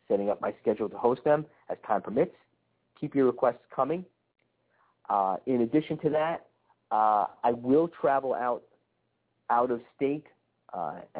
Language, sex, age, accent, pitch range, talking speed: English, male, 50-69, American, 115-150 Hz, 150 wpm